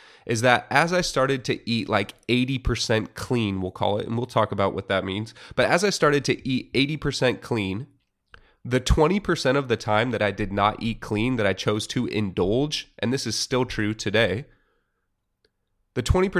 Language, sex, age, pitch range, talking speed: English, male, 30-49, 105-130 Hz, 185 wpm